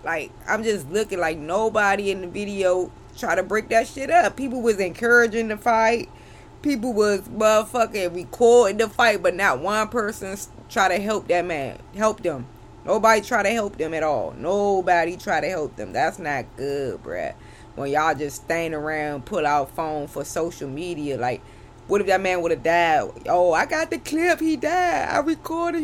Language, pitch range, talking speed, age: English, 175-220 Hz, 185 wpm, 20-39